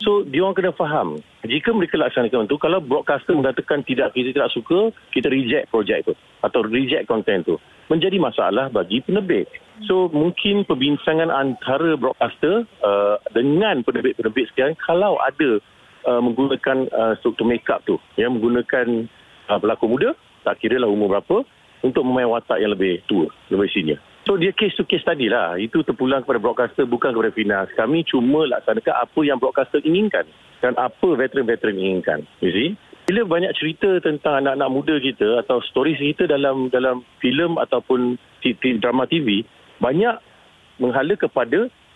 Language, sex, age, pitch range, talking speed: Malay, male, 50-69, 125-185 Hz, 155 wpm